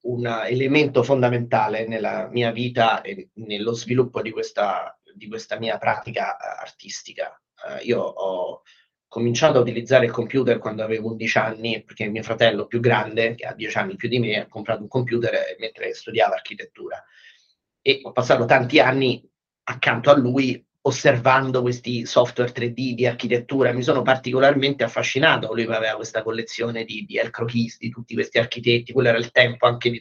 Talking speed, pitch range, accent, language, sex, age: 170 wpm, 115-140 Hz, native, Italian, male, 30-49